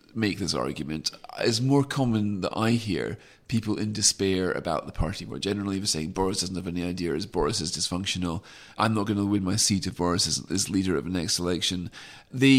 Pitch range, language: 95-115 Hz, English